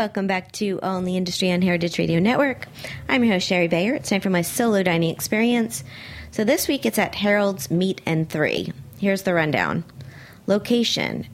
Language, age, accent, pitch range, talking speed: English, 40-59, American, 150-200 Hz, 190 wpm